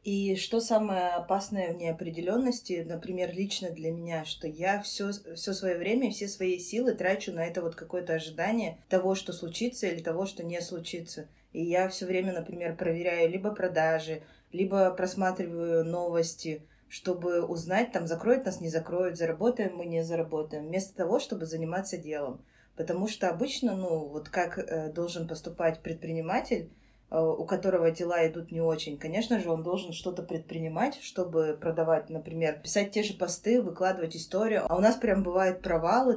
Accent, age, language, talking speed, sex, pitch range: native, 20-39, Russian, 160 wpm, female, 165-195 Hz